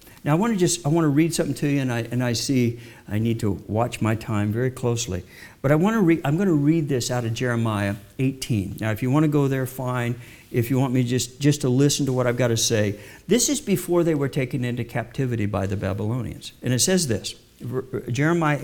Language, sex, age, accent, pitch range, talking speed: English, male, 60-79, American, 125-180 Hz, 250 wpm